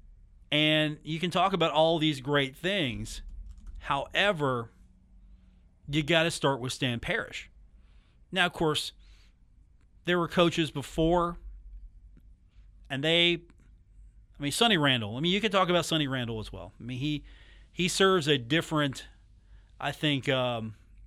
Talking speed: 145 wpm